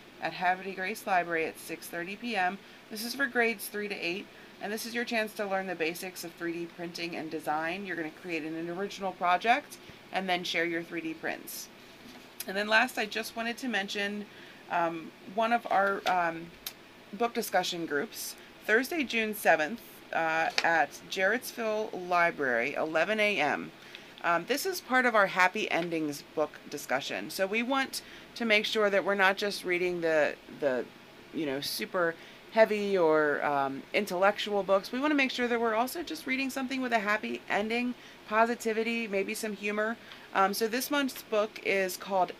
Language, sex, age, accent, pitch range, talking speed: English, female, 30-49, American, 175-230 Hz, 175 wpm